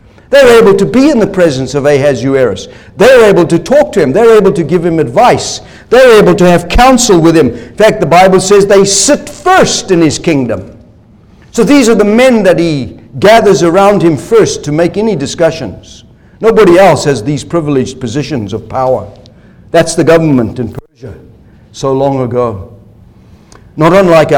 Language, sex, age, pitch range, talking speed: English, male, 60-79, 130-180 Hz, 175 wpm